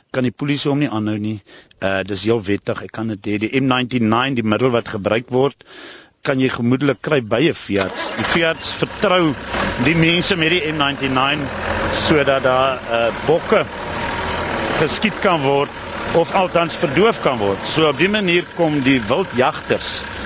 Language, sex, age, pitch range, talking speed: Dutch, male, 50-69, 105-145 Hz, 170 wpm